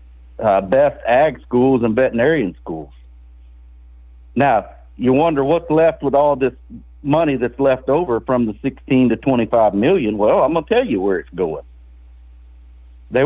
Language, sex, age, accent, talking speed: English, male, 60-79, American, 160 wpm